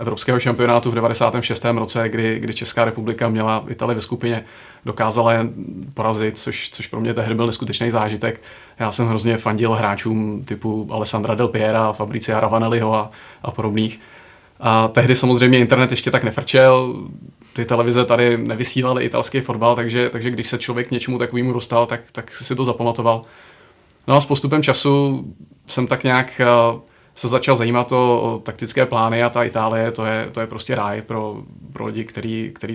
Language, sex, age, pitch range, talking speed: Czech, male, 30-49, 115-125 Hz, 165 wpm